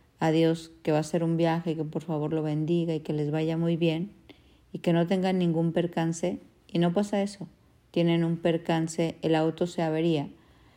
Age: 50-69